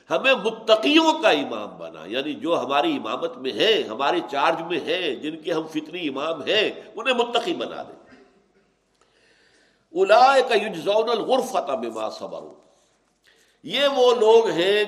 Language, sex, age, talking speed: Urdu, male, 60-79, 125 wpm